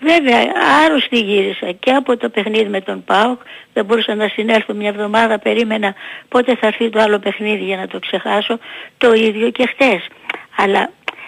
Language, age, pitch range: Greek, 60-79, 215-270 Hz